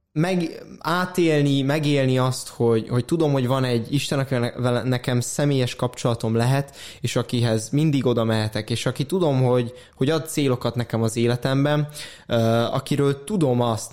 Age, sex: 20-39, male